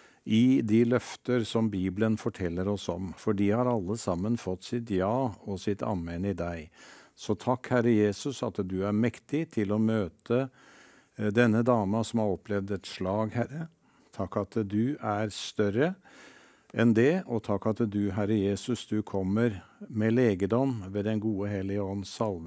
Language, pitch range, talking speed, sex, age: English, 100-120 Hz, 170 wpm, male, 50-69